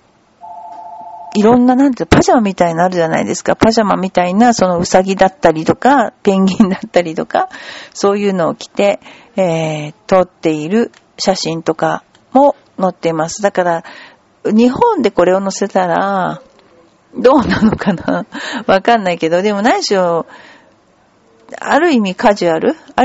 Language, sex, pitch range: Japanese, female, 180-240 Hz